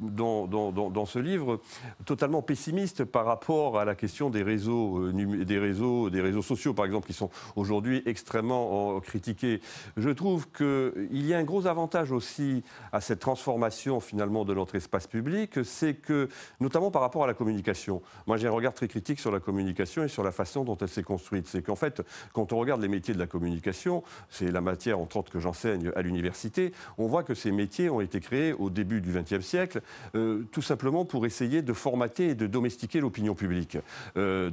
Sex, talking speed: male, 200 wpm